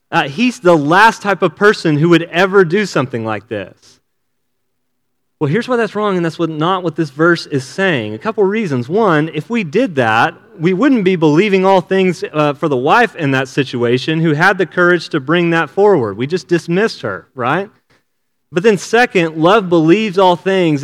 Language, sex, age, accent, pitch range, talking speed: English, male, 30-49, American, 160-215 Hz, 200 wpm